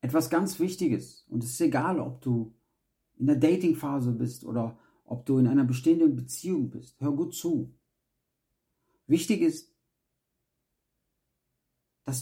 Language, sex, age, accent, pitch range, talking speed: German, male, 50-69, German, 130-185 Hz, 135 wpm